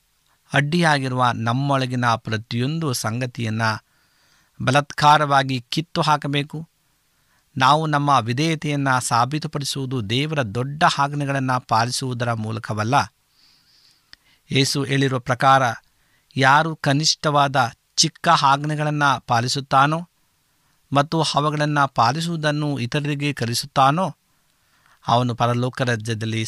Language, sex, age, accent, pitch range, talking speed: Kannada, male, 50-69, native, 120-150 Hz, 75 wpm